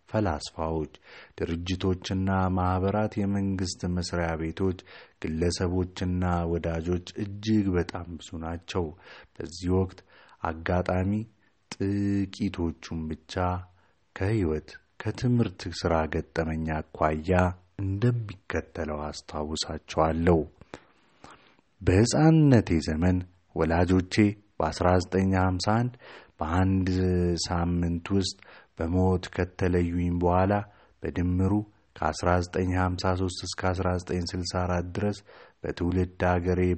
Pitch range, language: 85-95 Hz, Amharic